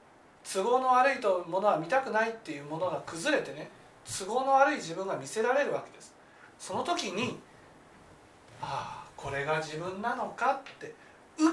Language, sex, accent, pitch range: Japanese, male, native, 225-350 Hz